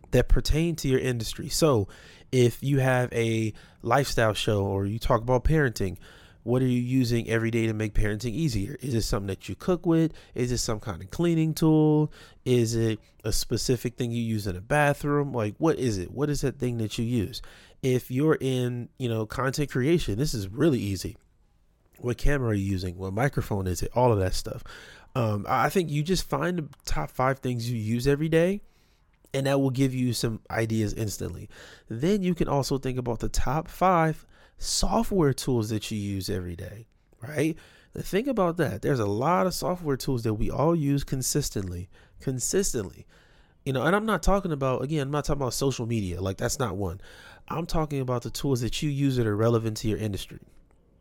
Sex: male